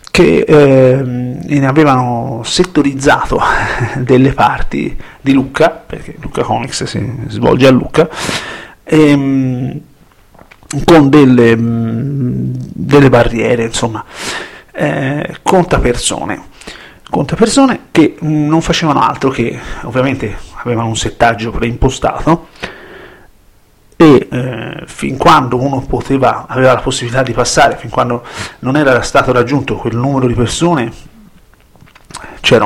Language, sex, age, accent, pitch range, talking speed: Italian, male, 40-59, native, 120-140 Hz, 100 wpm